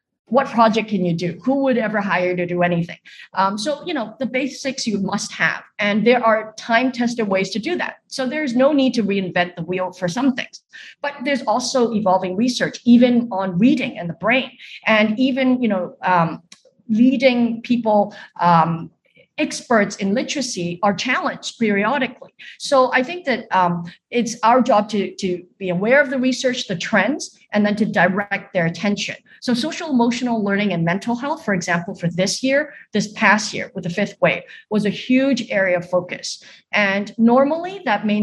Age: 50-69